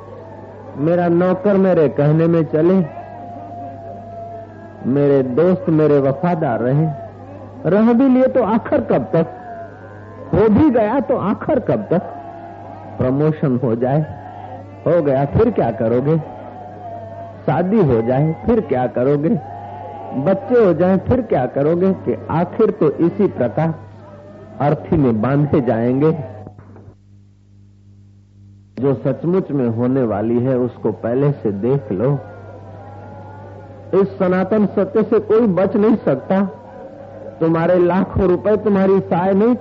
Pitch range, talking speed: 110-180 Hz, 120 wpm